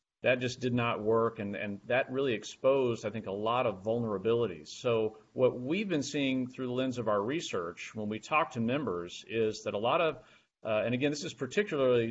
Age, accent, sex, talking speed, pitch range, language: 40-59, American, male, 215 wpm, 110-130 Hz, English